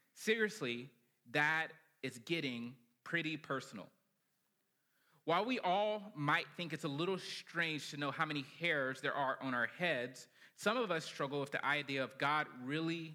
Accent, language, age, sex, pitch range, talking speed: American, English, 30-49, male, 135-170 Hz, 160 wpm